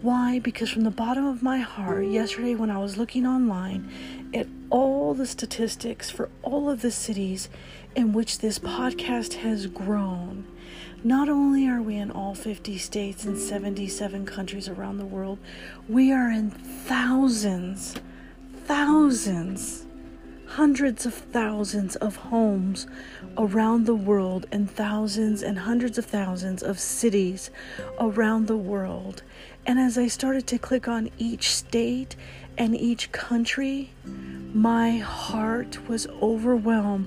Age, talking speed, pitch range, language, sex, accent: 40-59, 135 wpm, 200-235 Hz, English, female, American